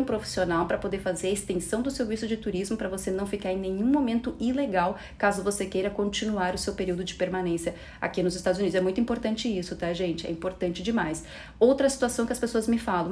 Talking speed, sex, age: 215 wpm, female, 30-49